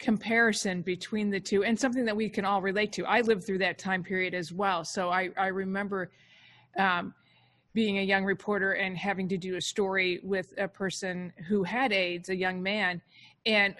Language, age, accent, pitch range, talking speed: English, 40-59, American, 185-210 Hz, 195 wpm